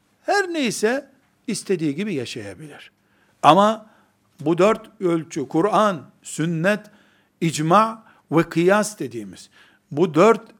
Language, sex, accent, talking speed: Turkish, male, native, 95 wpm